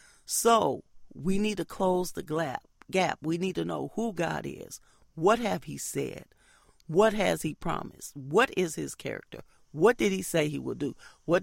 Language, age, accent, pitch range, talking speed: English, 40-59, American, 150-185 Hz, 185 wpm